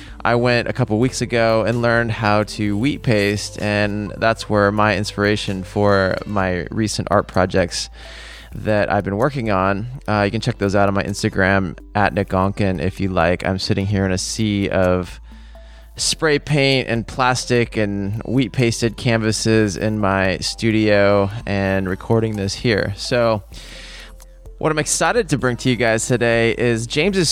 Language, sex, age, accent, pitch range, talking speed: English, male, 20-39, American, 100-120 Hz, 165 wpm